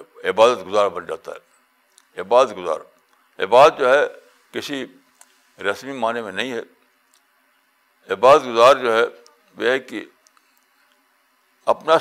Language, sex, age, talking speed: Urdu, male, 60-79, 120 wpm